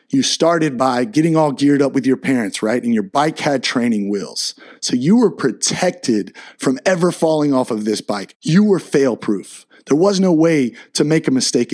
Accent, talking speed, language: American, 200 wpm, English